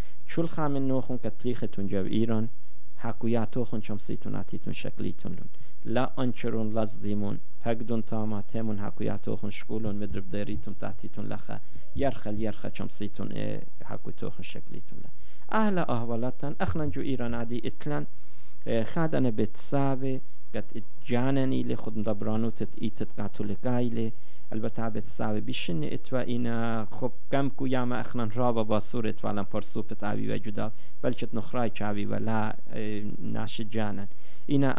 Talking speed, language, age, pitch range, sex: 130 wpm, English, 50-69, 105-125 Hz, male